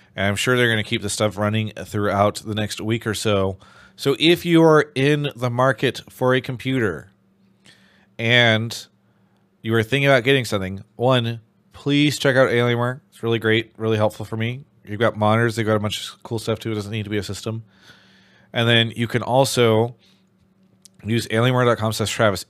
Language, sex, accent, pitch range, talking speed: English, male, American, 100-120 Hz, 190 wpm